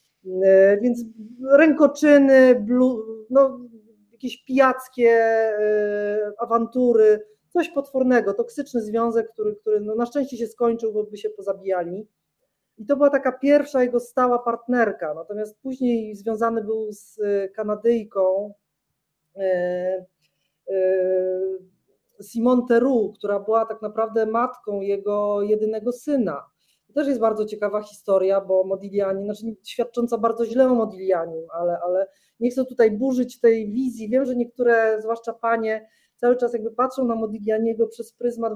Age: 30-49